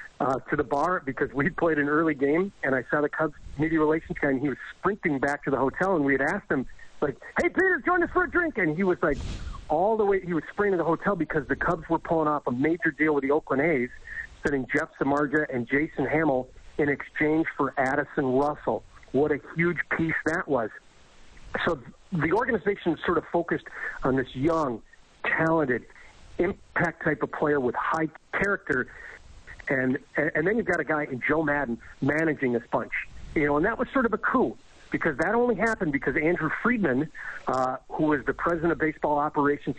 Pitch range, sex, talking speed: 140-170 Hz, male, 205 wpm